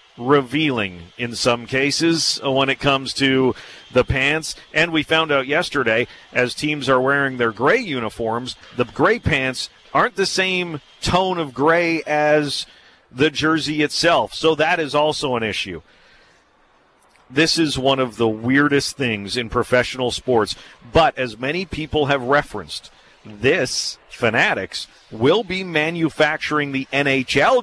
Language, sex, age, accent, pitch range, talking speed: English, male, 40-59, American, 120-150 Hz, 140 wpm